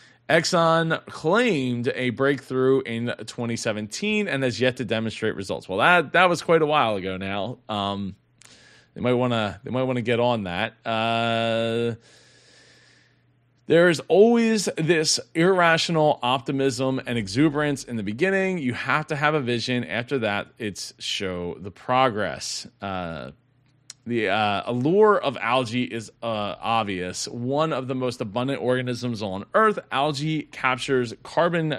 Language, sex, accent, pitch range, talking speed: English, male, American, 115-160 Hz, 145 wpm